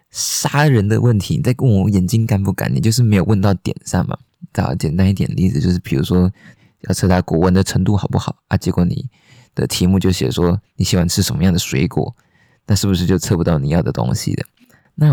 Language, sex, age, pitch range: Chinese, male, 20-39, 90-110 Hz